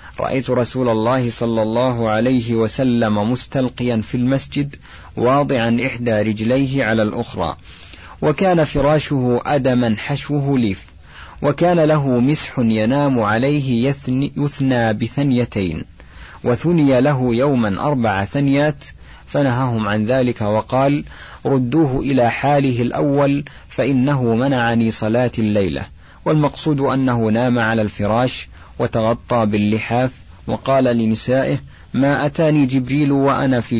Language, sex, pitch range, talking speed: Arabic, male, 110-140 Hz, 105 wpm